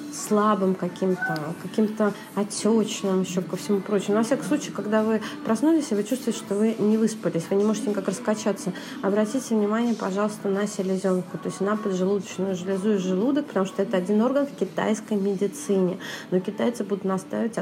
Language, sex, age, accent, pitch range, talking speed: Russian, female, 30-49, native, 195-225 Hz, 165 wpm